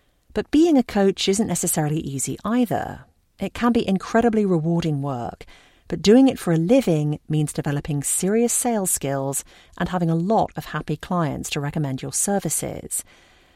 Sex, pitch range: female, 145-200 Hz